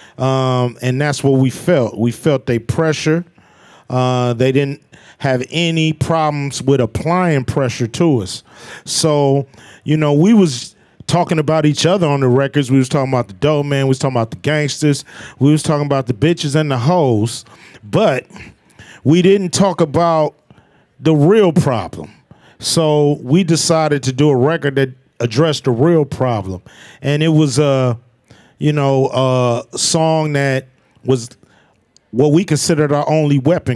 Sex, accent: male, American